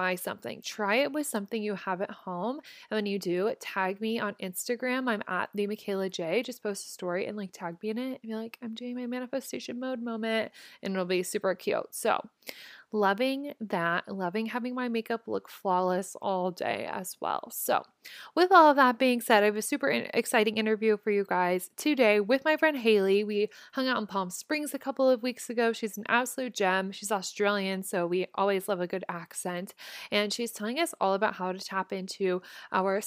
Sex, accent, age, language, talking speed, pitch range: female, American, 20-39, English, 210 wpm, 190-245 Hz